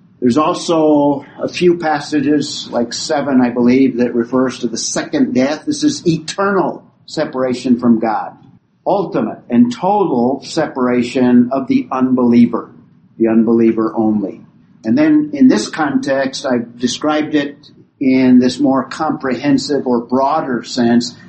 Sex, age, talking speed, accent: male, 50-69, 130 wpm, American